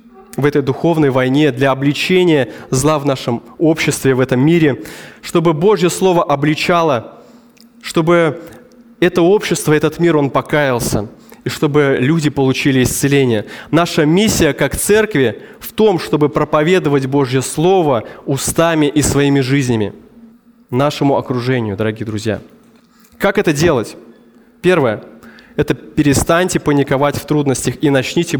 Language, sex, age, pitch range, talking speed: Russian, male, 20-39, 135-180 Hz, 125 wpm